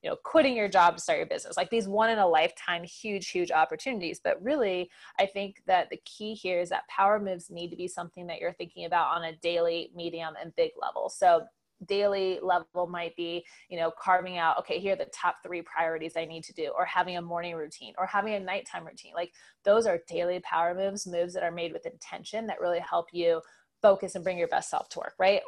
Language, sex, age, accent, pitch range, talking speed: English, female, 20-39, American, 170-205 Hz, 235 wpm